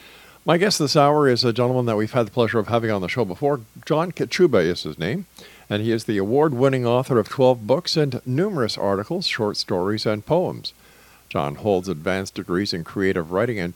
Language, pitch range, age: English, 100-135 Hz, 50-69